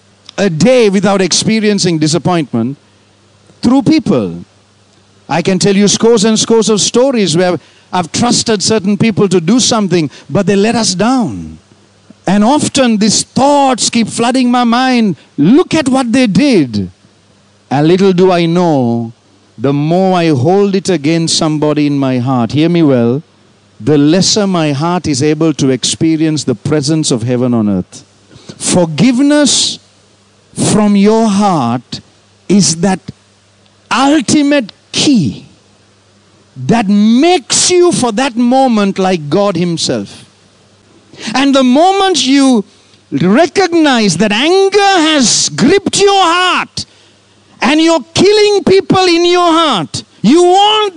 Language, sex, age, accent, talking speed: English, male, 50-69, Indian, 130 wpm